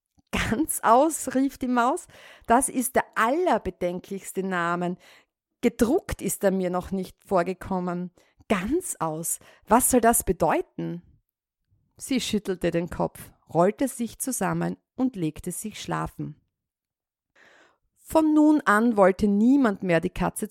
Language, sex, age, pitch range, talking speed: German, female, 50-69, 175-235 Hz, 125 wpm